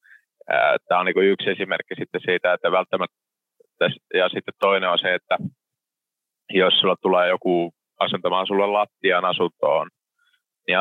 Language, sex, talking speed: Finnish, male, 135 wpm